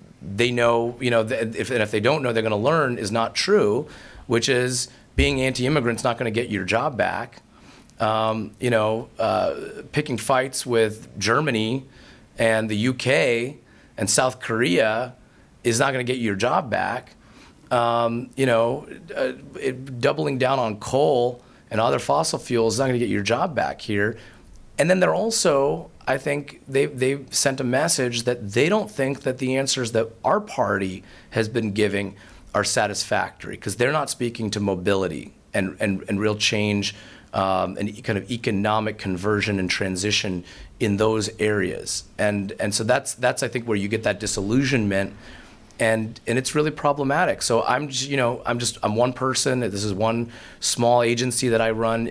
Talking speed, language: 180 wpm, English